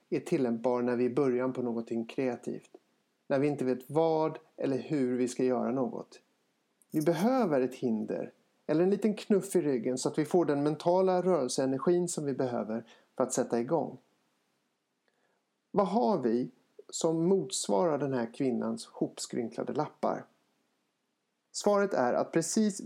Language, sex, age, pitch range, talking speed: Swedish, male, 60-79, 130-175 Hz, 150 wpm